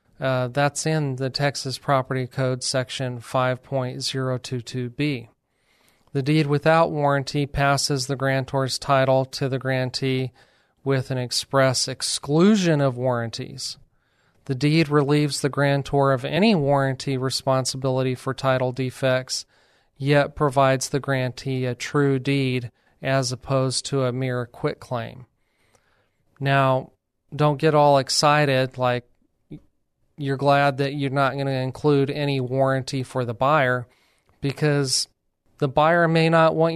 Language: English